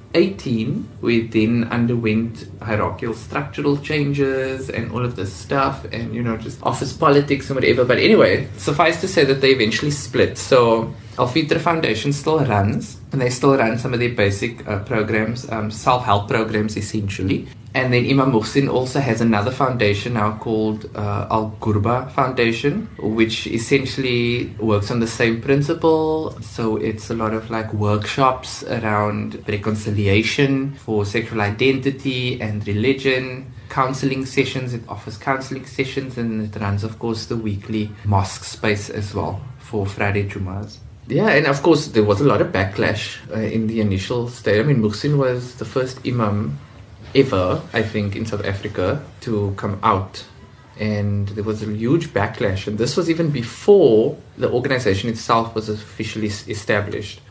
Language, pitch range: English, 105-130 Hz